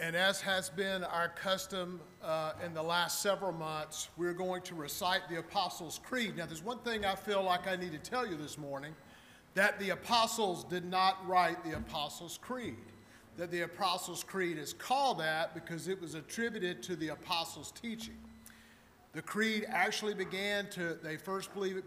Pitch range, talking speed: 175-210 Hz, 180 wpm